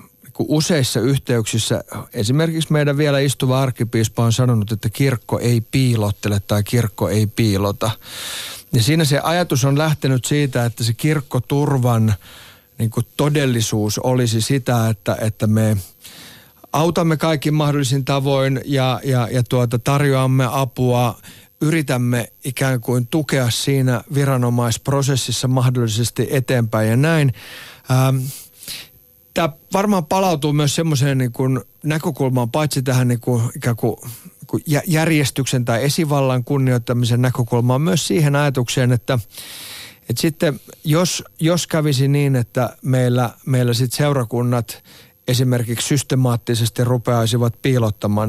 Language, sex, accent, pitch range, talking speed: Finnish, male, native, 120-145 Hz, 110 wpm